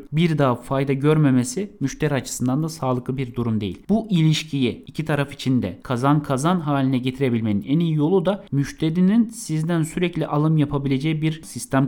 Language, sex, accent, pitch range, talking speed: Turkish, male, native, 130-175 Hz, 160 wpm